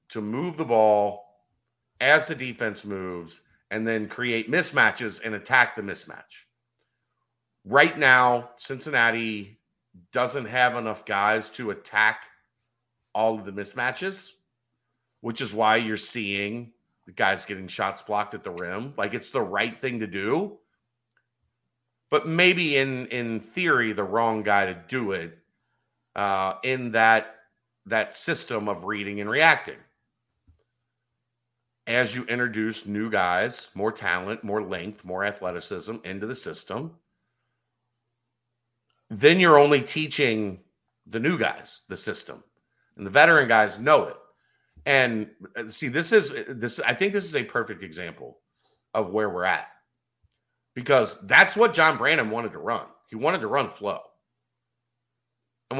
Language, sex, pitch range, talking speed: English, male, 110-130 Hz, 140 wpm